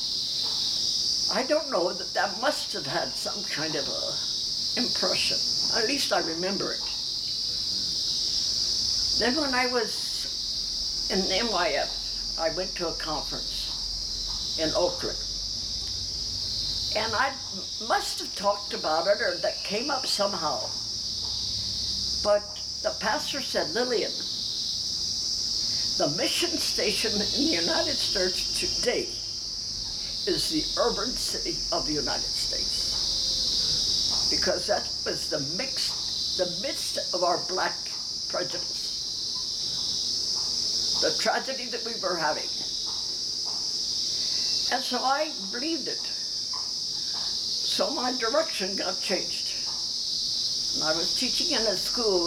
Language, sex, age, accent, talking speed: English, female, 60-79, American, 110 wpm